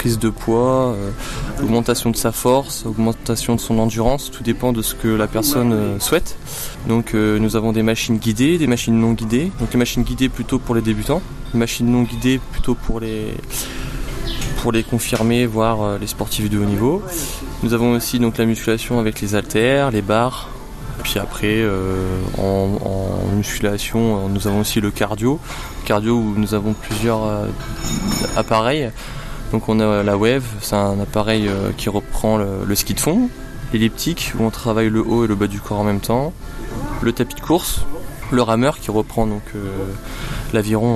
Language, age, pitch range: French, 20-39, 105-120 Hz